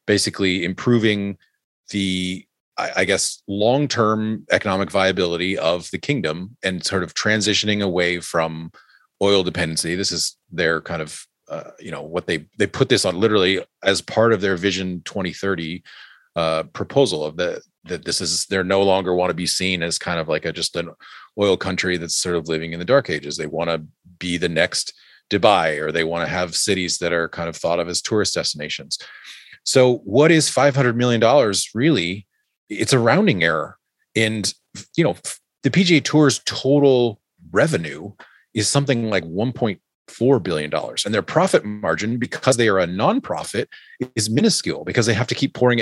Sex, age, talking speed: male, 30-49, 180 wpm